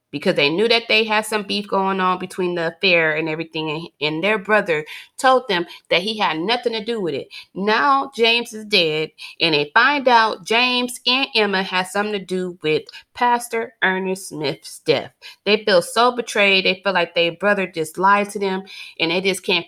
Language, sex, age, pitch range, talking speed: English, female, 30-49, 155-205 Hz, 200 wpm